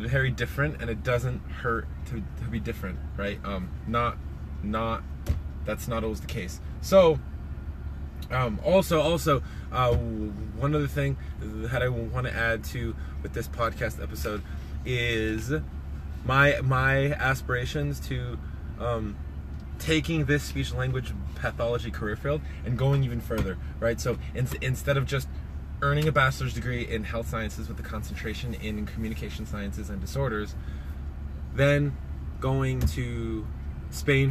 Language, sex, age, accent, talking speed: English, male, 20-39, American, 135 wpm